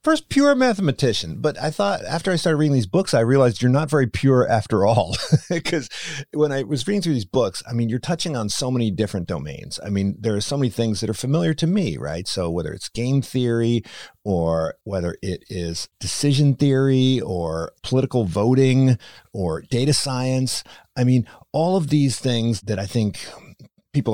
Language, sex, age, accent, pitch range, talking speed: English, male, 50-69, American, 100-145 Hz, 190 wpm